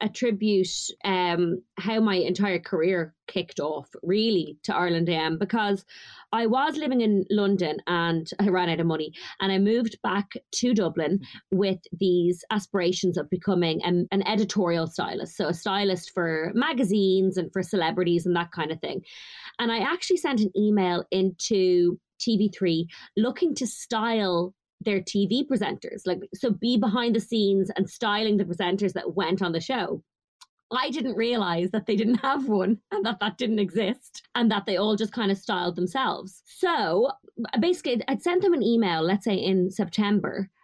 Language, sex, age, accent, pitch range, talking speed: English, female, 20-39, Irish, 180-225 Hz, 170 wpm